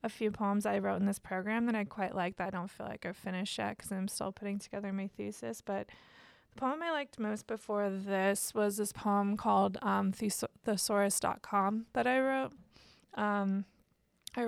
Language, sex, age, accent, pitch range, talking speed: English, female, 20-39, American, 195-215 Hz, 205 wpm